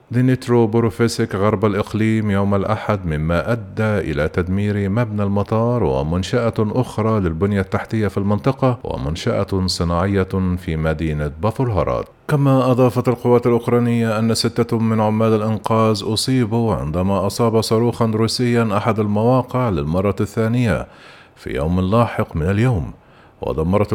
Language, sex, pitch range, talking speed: Arabic, male, 95-115 Hz, 120 wpm